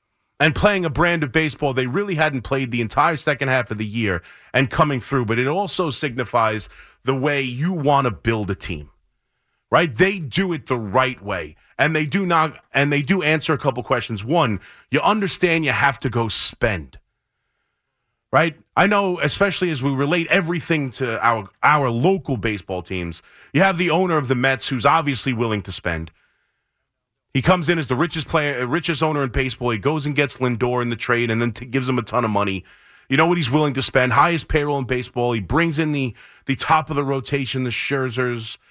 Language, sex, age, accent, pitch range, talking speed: English, male, 30-49, American, 120-165 Hz, 210 wpm